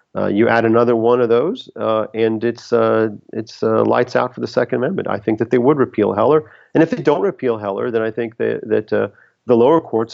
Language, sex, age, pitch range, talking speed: English, male, 40-59, 105-115 Hz, 245 wpm